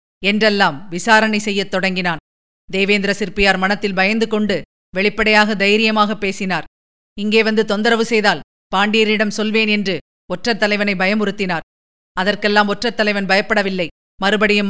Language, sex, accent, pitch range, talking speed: Tamil, female, native, 190-215 Hz, 100 wpm